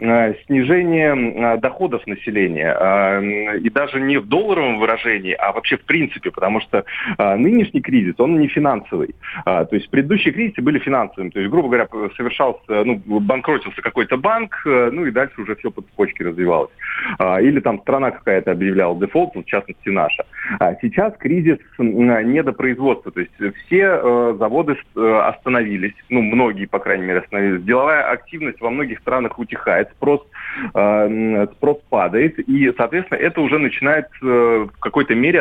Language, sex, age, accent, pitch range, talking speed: Russian, male, 30-49, native, 105-140 Hz, 140 wpm